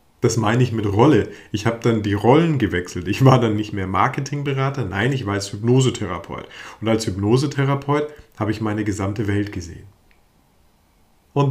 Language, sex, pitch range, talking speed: German, male, 100-120 Hz, 165 wpm